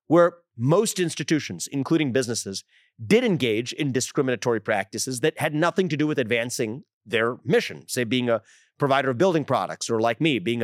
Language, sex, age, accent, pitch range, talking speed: English, male, 30-49, American, 125-165 Hz, 170 wpm